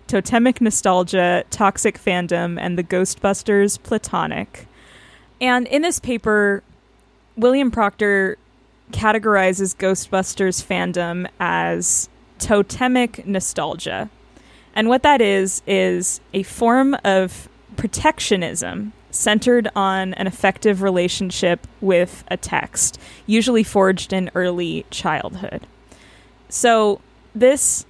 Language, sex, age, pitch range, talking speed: English, female, 10-29, 180-220 Hz, 95 wpm